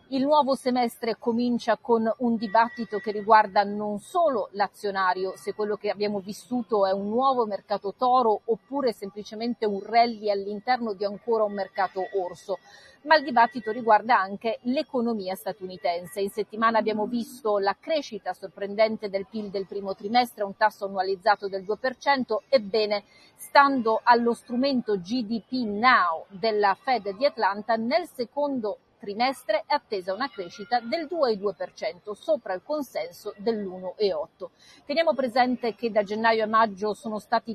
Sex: female